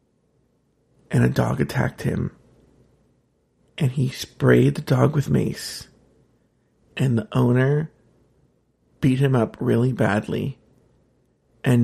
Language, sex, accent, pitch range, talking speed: English, male, American, 120-180 Hz, 105 wpm